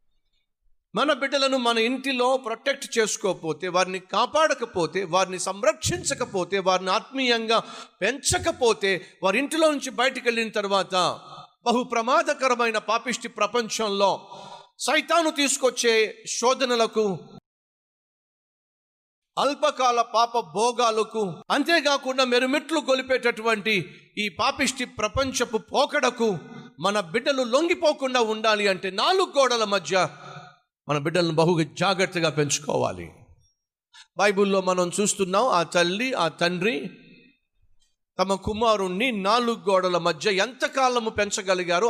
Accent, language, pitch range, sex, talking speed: native, Telugu, 185-250 Hz, male, 65 wpm